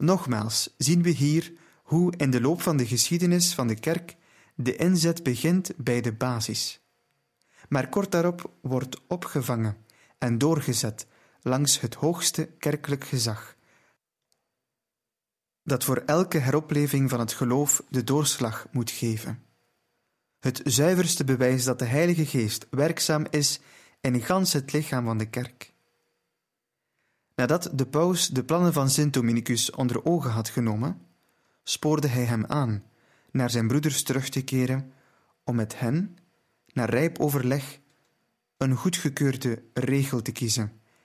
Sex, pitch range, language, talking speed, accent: male, 120-150 Hz, Dutch, 135 wpm, Dutch